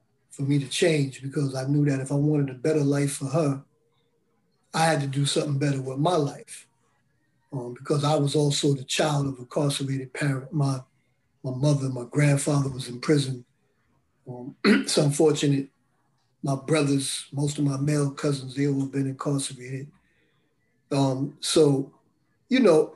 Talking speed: 165 wpm